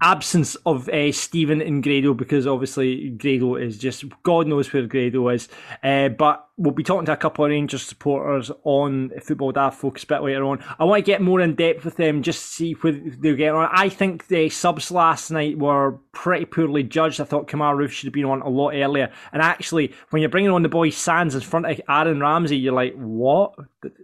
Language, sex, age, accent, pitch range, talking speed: English, male, 20-39, British, 140-175 Hz, 220 wpm